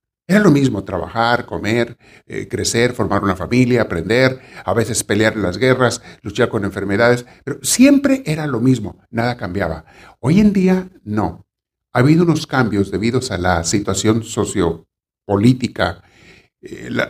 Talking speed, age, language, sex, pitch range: 145 wpm, 50-69, Spanish, male, 90-125 Hz